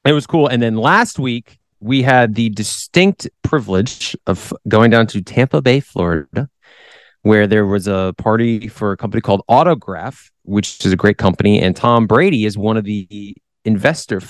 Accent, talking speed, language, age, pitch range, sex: American, 175 wpm, English, 30-49, 100-120 Hz, male